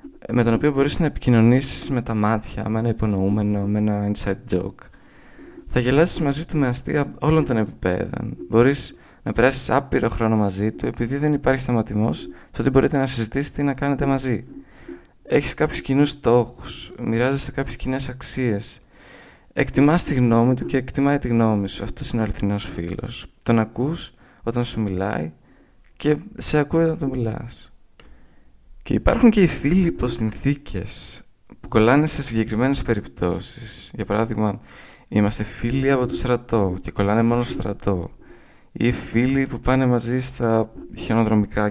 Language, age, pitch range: Greek, 20-39, 105-140 Hz